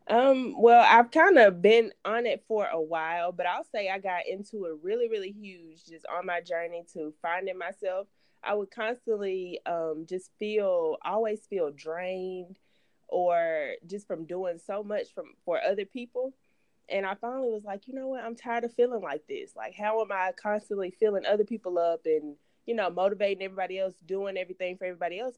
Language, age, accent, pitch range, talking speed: English, 20-39, American, 170-230 Hz, 190 wpm